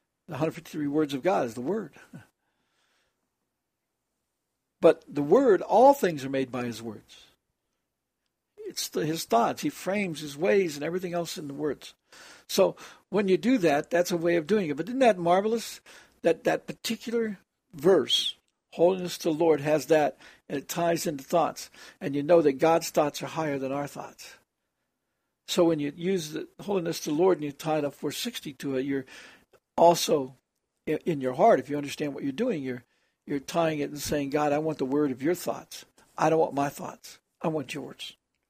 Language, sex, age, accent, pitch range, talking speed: English, male, 60-79, American, 150-185 Hz, 195 wpm